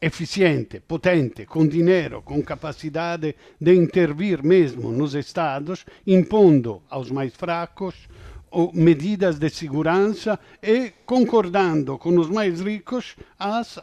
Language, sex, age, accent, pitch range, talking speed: Portuguese, male, 50-69, Italian, 160-210 Hz, 110 wpm